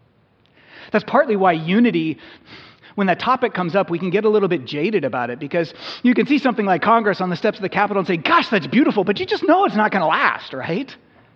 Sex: male